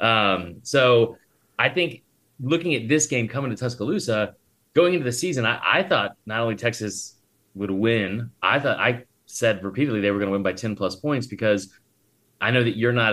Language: English